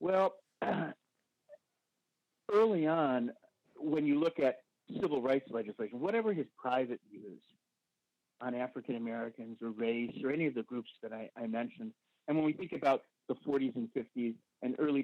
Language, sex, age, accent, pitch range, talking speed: English, male, 50-69, American, 125-160 Hz, 150 wpm